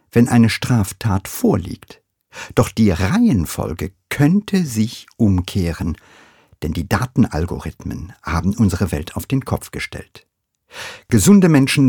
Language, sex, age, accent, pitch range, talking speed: English, male, 50-69, German, 95-125 Hz, 110 wpm